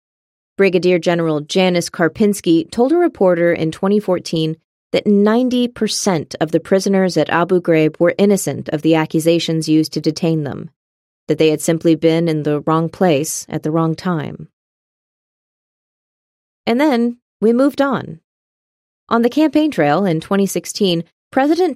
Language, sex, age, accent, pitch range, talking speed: English, female, 30-49, American, 160-205 Hz, 140 wpm